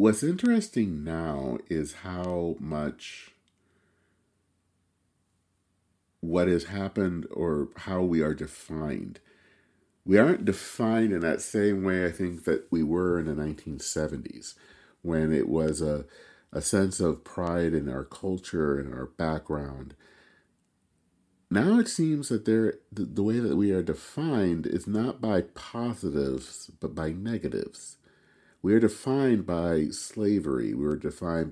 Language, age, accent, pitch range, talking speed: English, 40-59, American, 80-105 Hz, 130 wpm